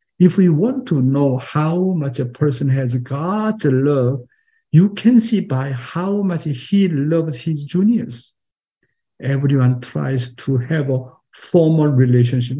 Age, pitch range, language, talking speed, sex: 50-69, 120-150 Hz, English, 140 wpm, male